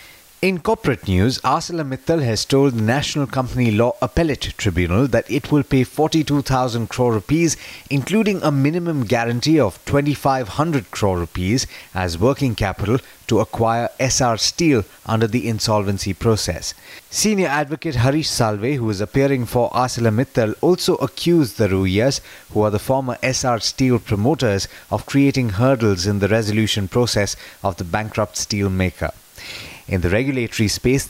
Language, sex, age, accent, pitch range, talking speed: English, male, 30-49, Indian, 105-140 Hz, 145 wpm